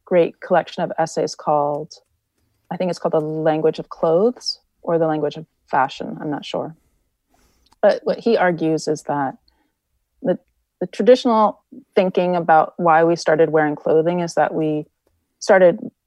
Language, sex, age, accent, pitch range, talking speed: English, female, 30-49, American, 155-195 Hz, 155 wpm